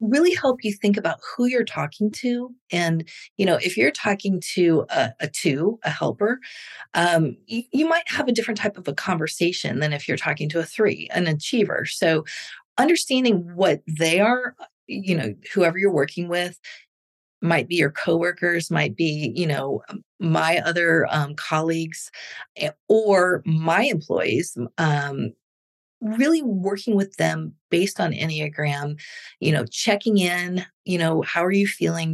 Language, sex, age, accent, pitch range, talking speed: English, female, 30-49, American, 160-215 Hz, 160 wpm